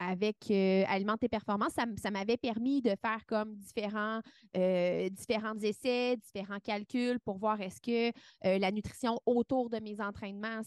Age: 30-49